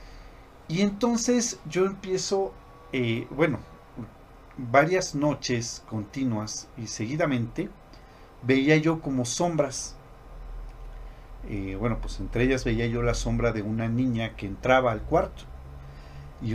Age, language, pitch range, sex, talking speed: 40-59, Spanish, 110-150 Hz, male, 115 wpm